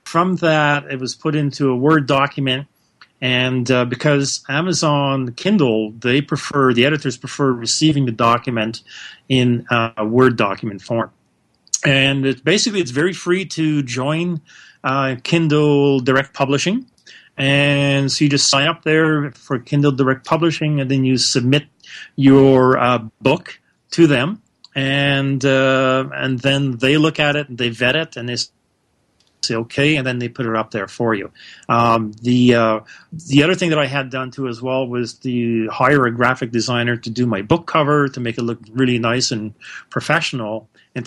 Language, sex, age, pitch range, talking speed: English, male, 30-49, 120-145 Hz, 170 wpm